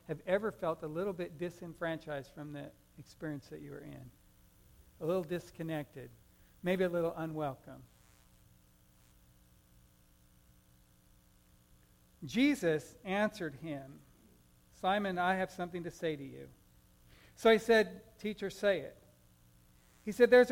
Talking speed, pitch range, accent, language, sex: 120 wpm, 145-200 Hz, American, English, male